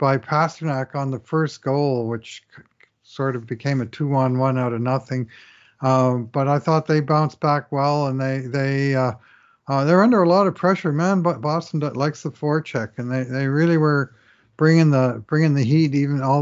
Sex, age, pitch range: male, 50-69, 125-150 Hz